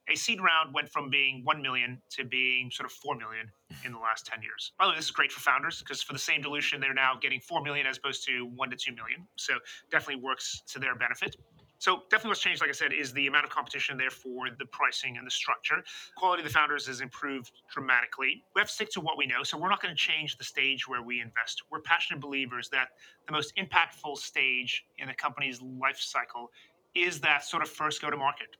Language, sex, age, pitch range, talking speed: English, male, 30-49, 130-160 Hz, 245 wpm